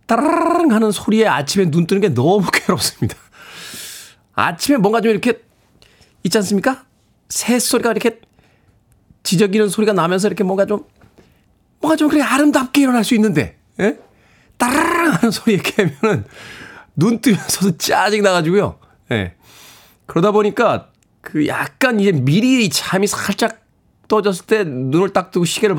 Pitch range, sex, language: 125-210 Hz, male, Korean